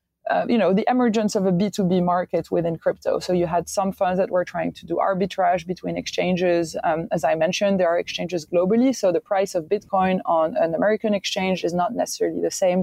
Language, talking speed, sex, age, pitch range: English, 215 wpm, female, 20-39, 180-210 Hz